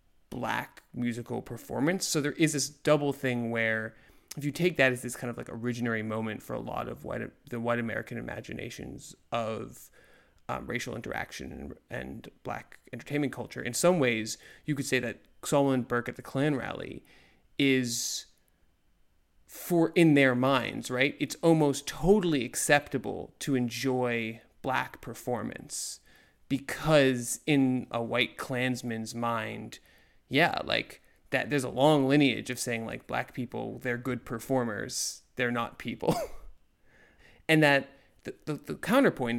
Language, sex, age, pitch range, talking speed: English, male, 30-49, 120-145 Hz, 145 wpm